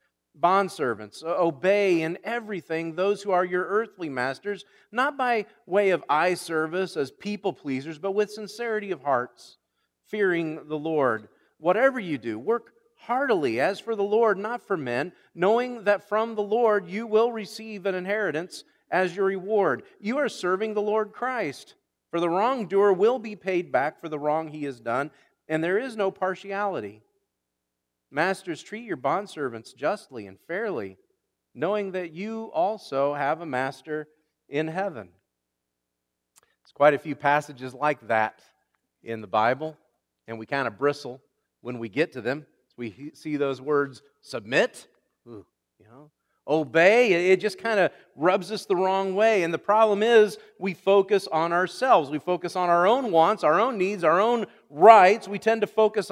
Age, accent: 40-59, American